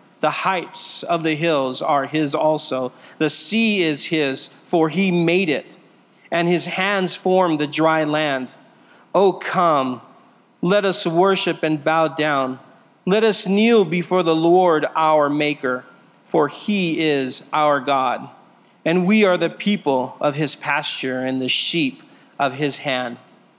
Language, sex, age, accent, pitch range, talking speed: English, male, 40-59, American, 145-180 Hz, 150 wpm